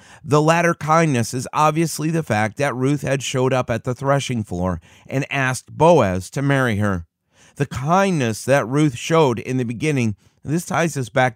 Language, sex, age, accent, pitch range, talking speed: English, male, 30-49, American, 115-150 Hz, 180 wpm